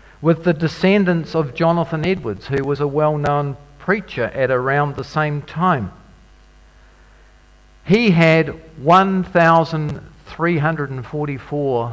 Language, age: English, 50-69